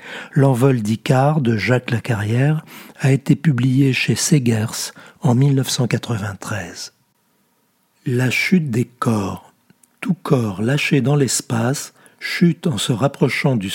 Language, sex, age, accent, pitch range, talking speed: French, male, 60-79, French, 120-155 Hz, 115 wpm